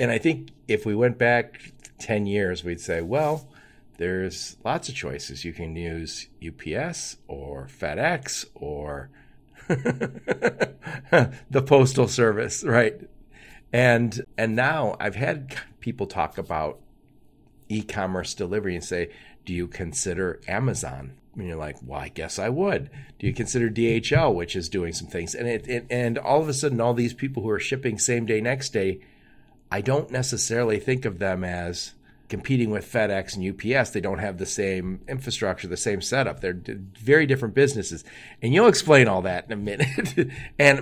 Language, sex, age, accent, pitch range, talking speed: English, male, 50-69, American, 95-130 Hz, 165 wpm